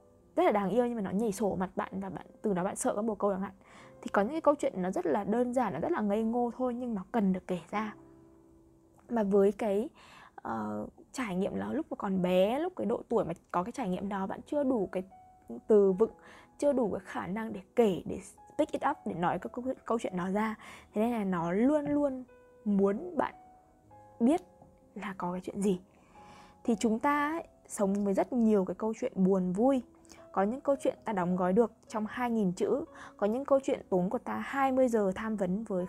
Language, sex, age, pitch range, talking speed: Vietnamese, female, 20-39, 185-240 Hz, 235 wpm